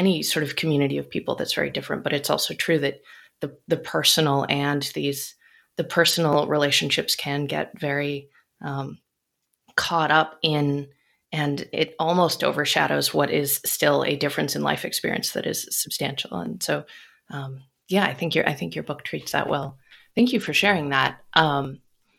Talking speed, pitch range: 175 wpm, 150-200 Hz